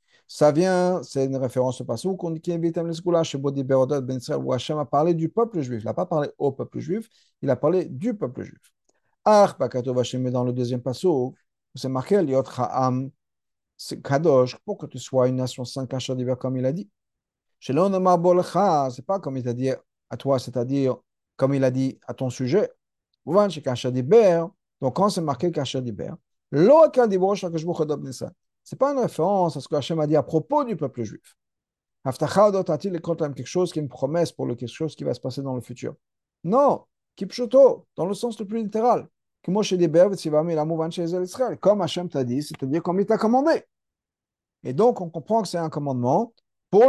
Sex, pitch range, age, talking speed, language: male, 130-190 Hz, 50-69, 210 wpm, French